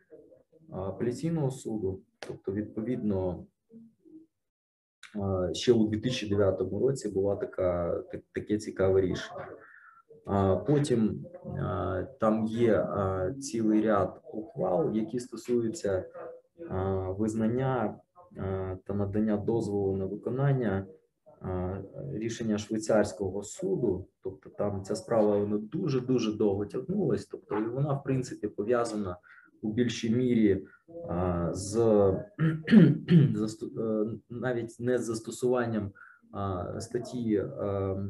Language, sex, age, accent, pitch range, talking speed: Ukrainian, male, 20-39, native, 100-130 Hz, 80 wpm